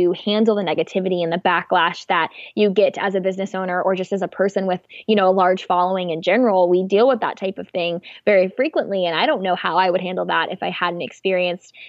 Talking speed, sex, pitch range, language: 240 wpm, female, 185-225 Hz, English